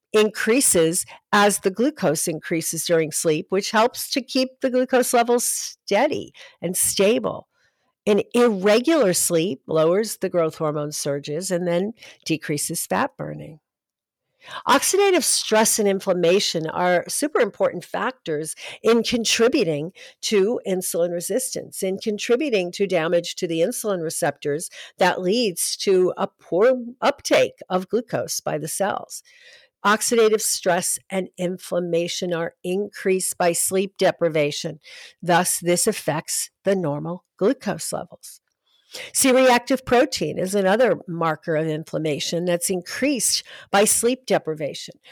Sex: female